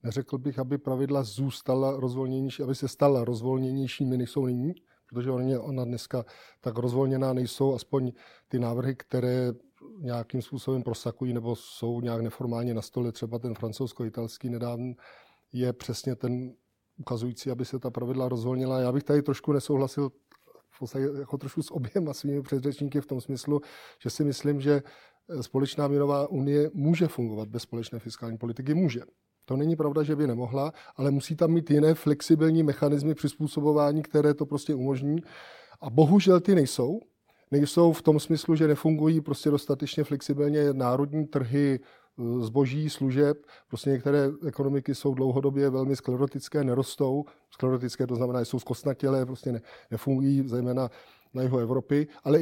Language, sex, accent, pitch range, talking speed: Czech, male, native, 130-150 Hz, 150 wpm